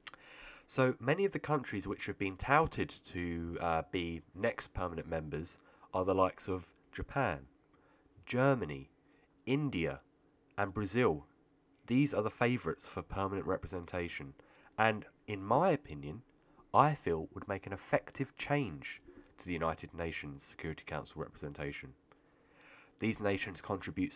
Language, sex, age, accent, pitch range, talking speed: English, male, 30-49, British, 95-140 Hz, 130 wpm